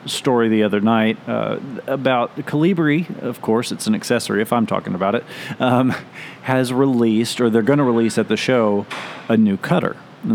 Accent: American